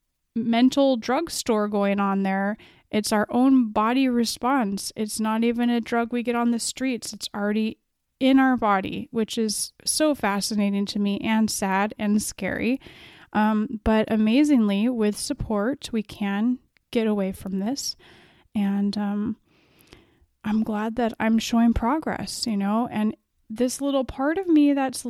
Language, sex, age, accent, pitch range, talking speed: English, female, 30-49, American, 215-270 Hz, 150 wpm